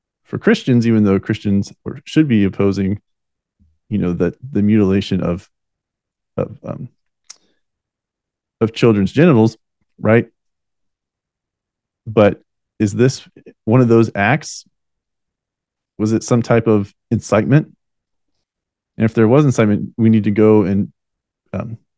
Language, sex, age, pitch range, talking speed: English, male, 30-49, 105-125 Hz, 125 wpm